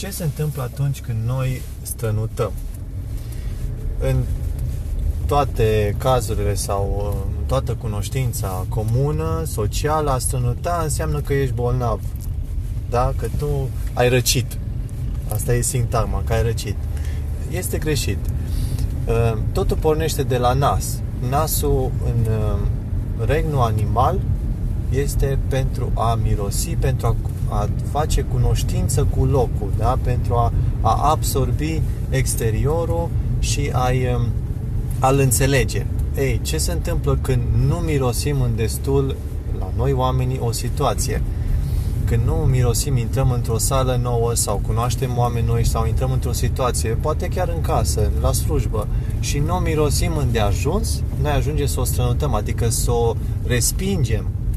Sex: male